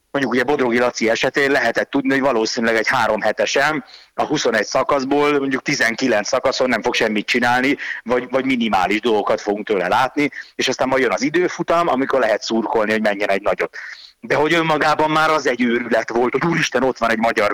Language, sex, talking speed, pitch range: Hungarian, male, 190 wpm, 110-145 Hz